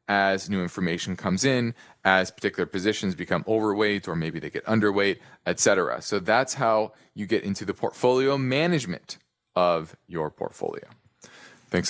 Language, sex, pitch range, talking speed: English, male, 110-150 Hz, 150 wpm